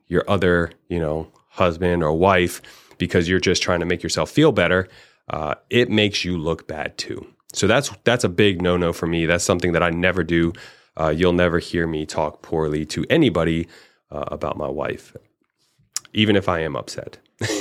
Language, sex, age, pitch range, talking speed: English, male, 30-49, 85-95 Hz, 190 wpm